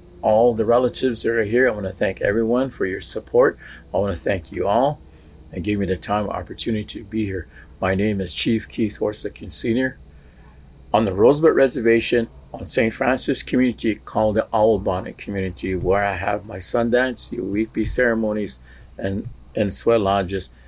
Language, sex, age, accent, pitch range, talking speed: English, male, 50-69, American, 75-115 Hz, 185 wpm